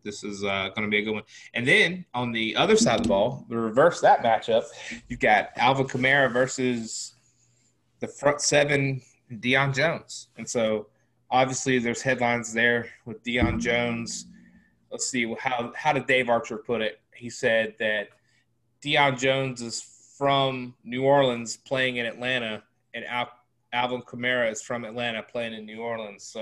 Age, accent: 20-39, American